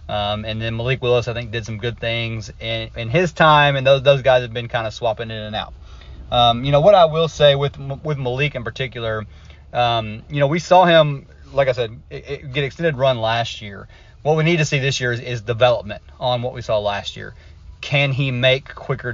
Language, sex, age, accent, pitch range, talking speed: English, male, 30-49, American, 115-135 Hz, 235 wpm